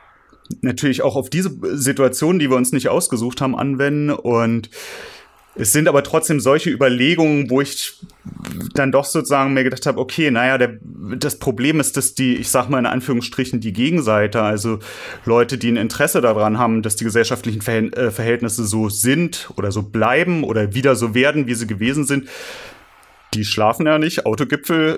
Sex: male